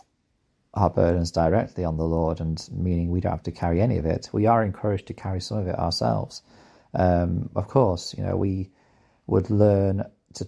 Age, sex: 30-49, male